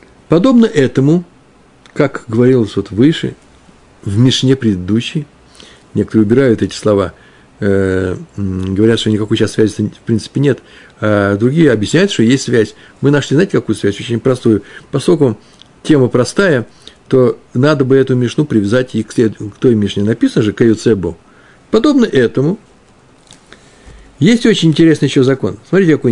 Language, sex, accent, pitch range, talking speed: Russian, male, native, 110-155 Hz, 140 wpm